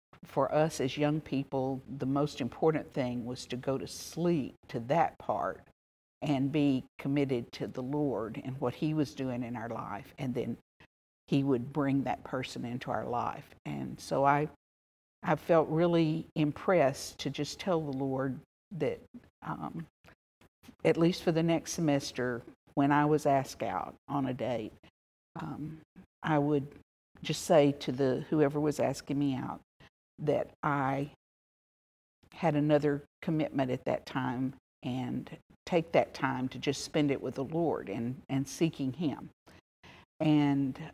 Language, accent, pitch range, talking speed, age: English, American, 130-155 Hz, 155 wpm, 60-79